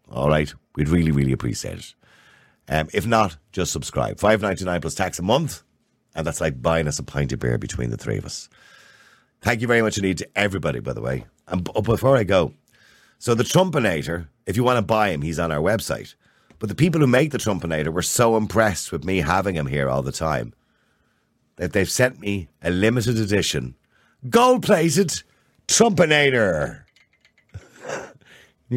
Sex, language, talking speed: male, English, 185 wpm